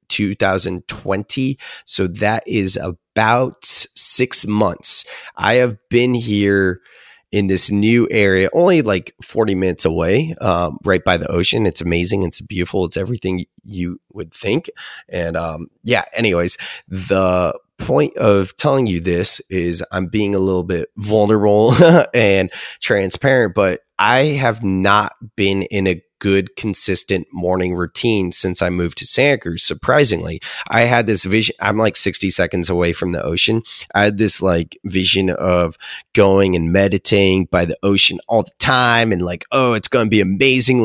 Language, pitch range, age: English, 95-115 Hz, 20-39